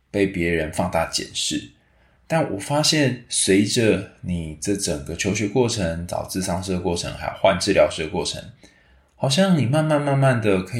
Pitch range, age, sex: 90-125 Hz, 20-39, male